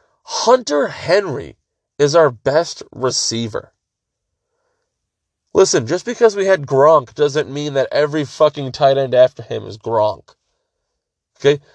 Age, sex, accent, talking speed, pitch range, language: 20-39, male, American, 125 wpm, 125-210 Hz, English